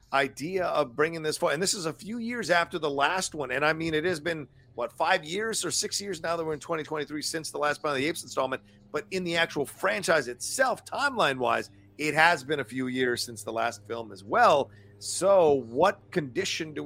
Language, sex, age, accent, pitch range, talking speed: English, male, 40-59, American, 115-175 Hz, 230 wpm